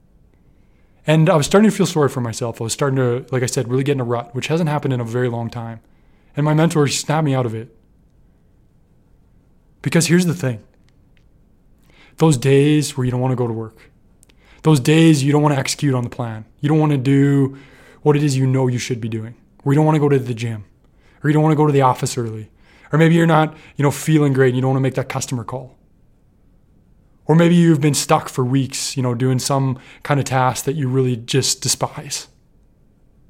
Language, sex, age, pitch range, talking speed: English, male, 20-39, 125-150 Hz, 230 wpm